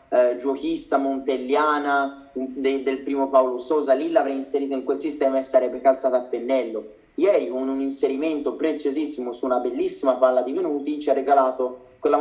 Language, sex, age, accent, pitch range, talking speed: Italian, male, 20-39, native, 130-155 Hz, 165 wpm